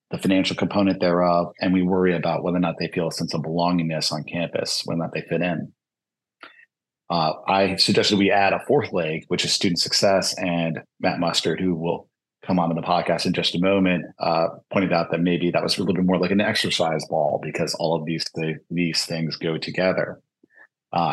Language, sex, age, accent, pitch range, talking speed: English, male, 30-49, American, 85-95 Hz, 215 wpm